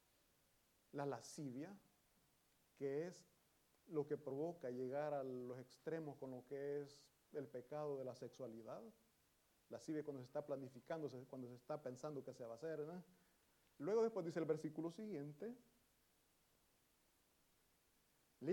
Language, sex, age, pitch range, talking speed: Italian, male, 40-59, 135-185 Hz, 135 wpm